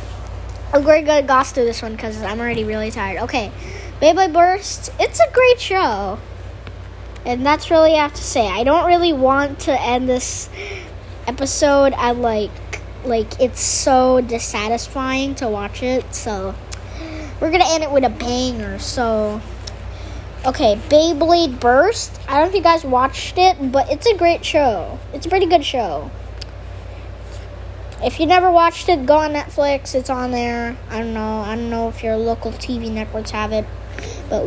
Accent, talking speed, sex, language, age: American, 170 wpm, female, English, 10-29